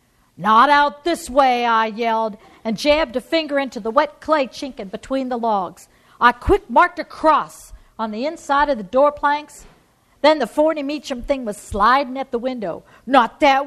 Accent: American